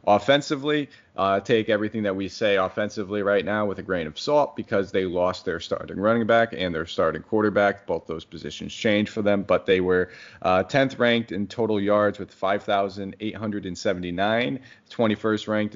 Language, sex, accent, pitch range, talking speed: English, male, American, 95-110 Hz, 170 wpm